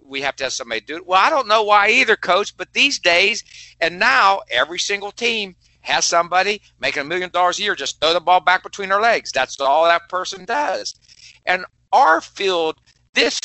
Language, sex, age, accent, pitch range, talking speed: English, male, 50-69, American, 130-200 Hz, 210 wpm